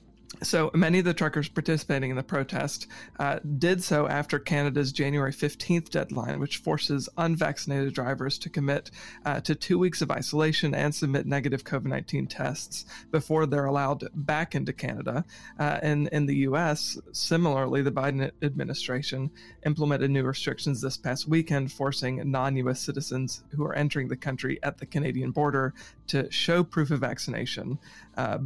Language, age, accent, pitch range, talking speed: English, 40-59, American, 135-155 Hz, 155 wpm